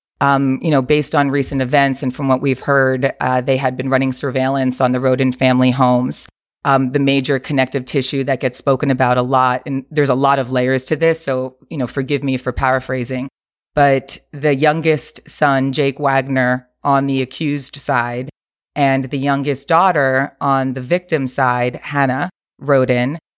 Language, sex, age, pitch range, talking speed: English, female, 30-49, 130-155 Hz, 175 wpm